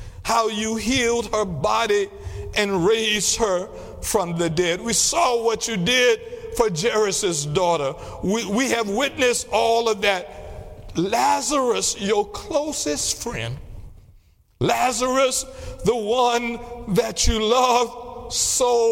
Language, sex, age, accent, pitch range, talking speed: English, male, 60-79, American, 180-245 Hz, 115 wpm